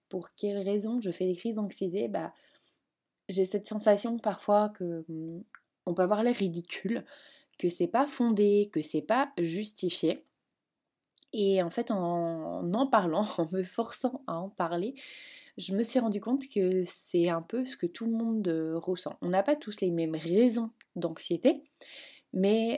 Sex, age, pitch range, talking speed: female, 20-39, 170-230 Hz, 165 wpm